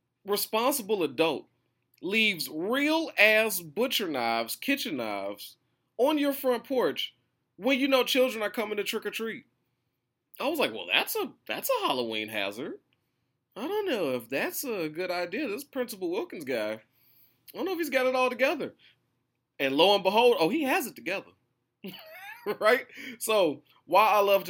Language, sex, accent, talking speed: English, male, American, 160 wpm